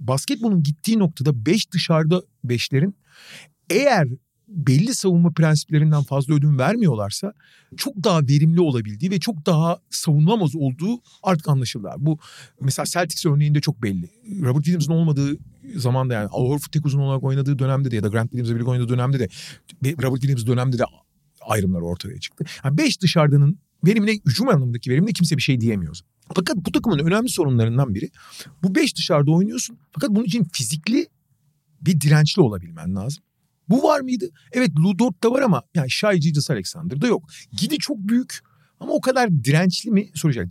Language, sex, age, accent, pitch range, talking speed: Turkish, male, 40-59, native, 135-190 Hz, 155 wpm